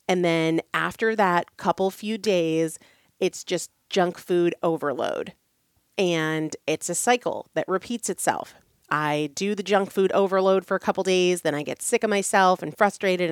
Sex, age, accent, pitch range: female, 30-49, American, 170-240 Hz